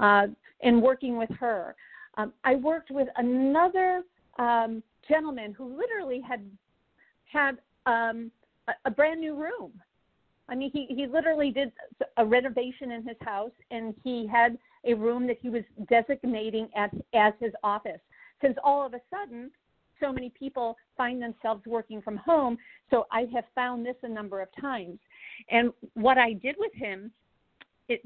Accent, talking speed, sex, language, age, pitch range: American, 160 wpm, female, English, 50-69, 220-265 Hz